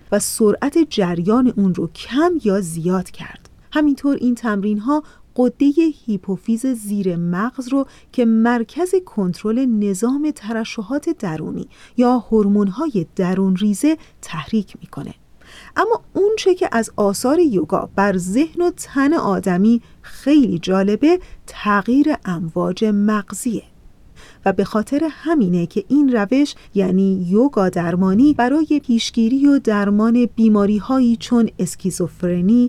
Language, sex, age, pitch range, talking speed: Persian, female, 40-59, 195-250 Hz, 115 wpm